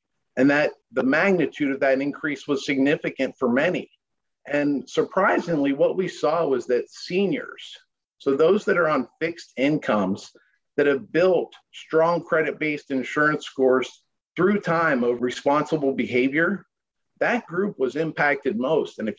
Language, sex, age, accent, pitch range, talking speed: English, male, 50-69, American, 135-170 Hz, 140 wpm